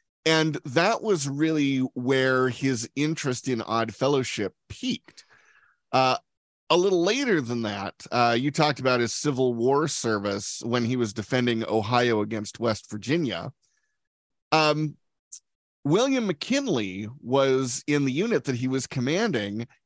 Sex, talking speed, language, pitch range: male, 135 wpm, English, 120-155 Hz